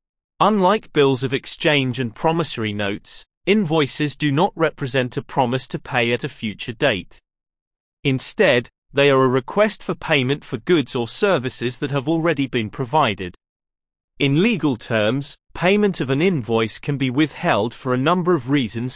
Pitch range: 115-160 Hz